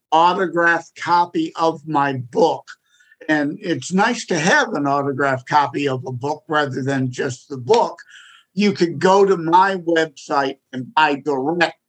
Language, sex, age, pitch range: English, male, 50-69, 145-185 Hz